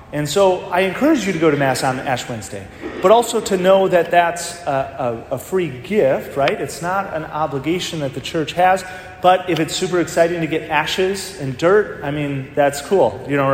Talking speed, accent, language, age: 215 wpm, American, English, 30-49